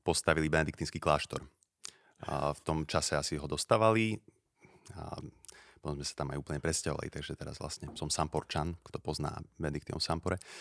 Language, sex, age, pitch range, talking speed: Slovak, male, 30-49, 75-95 Hz, 145 wpm